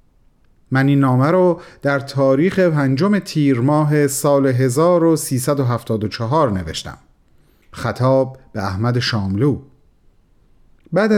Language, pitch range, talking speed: Persian, 130-180 Hz, 90 wpm